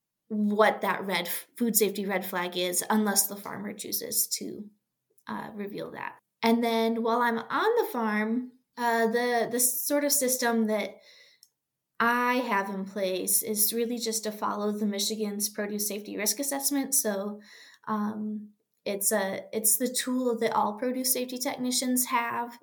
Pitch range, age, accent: 205-235 Hz, 20-39, American